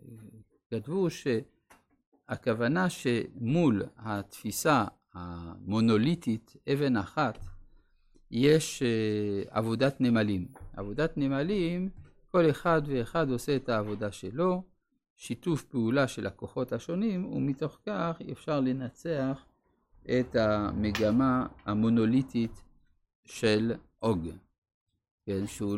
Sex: male